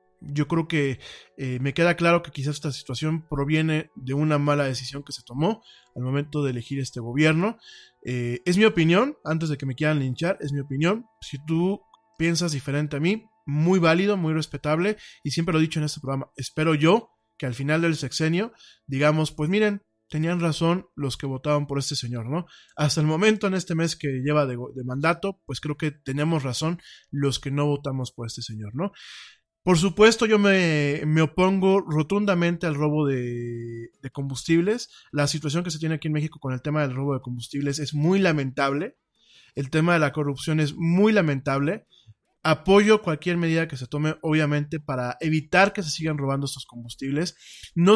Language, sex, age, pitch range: Spanish, male, 20-39, 140-170 Hz